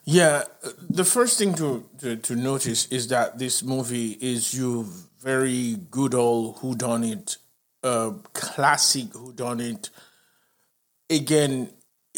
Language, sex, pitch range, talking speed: English, male, 125-170 Hz, 110 wpm